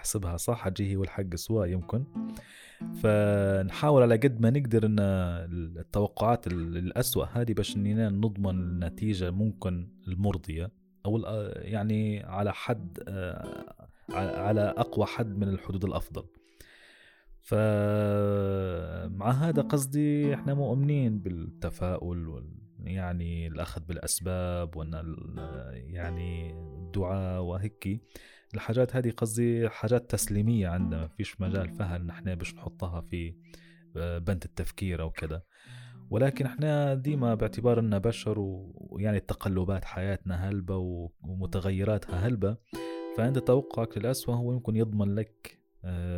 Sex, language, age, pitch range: male, Arabic, 20-39, 85-110 Hz